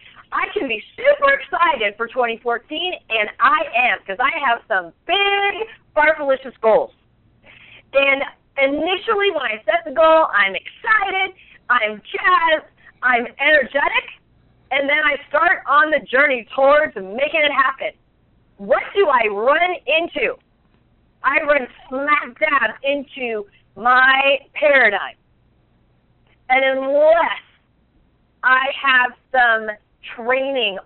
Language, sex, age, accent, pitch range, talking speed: English, female, 40-59, American, 225-295 Hz, 115 wpm